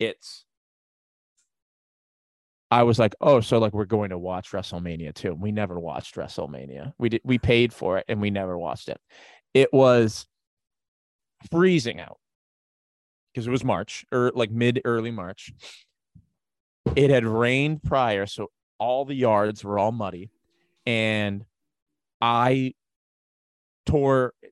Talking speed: 135 wpm